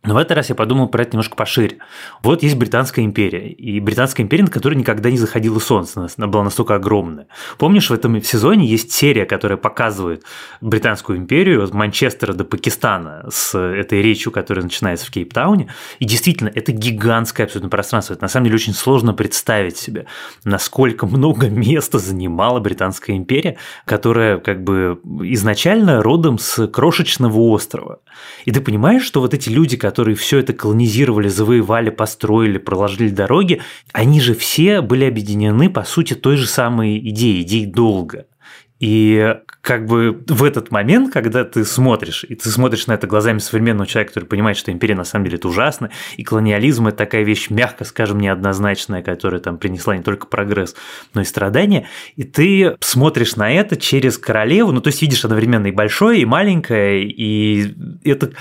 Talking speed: 170 wpm